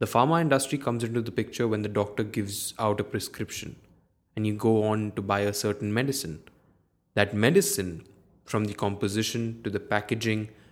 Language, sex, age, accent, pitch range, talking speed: English, male, 20-39, Indian, 100-115 Hz, 175 wpm